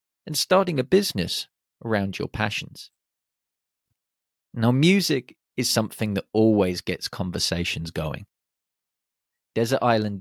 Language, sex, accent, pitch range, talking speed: English, male, British, 100-145 Hz, 105 wpm